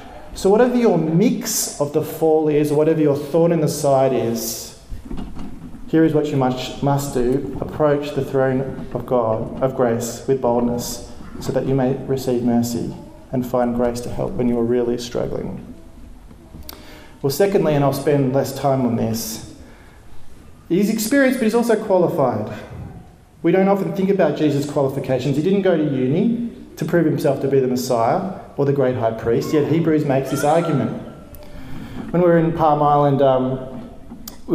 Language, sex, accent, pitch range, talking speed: English, male, Australian, 125-165 Hz, 170 wpm